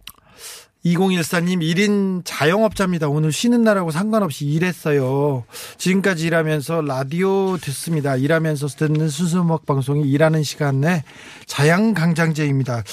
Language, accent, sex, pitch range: Korean, native, male, 135-175 Hz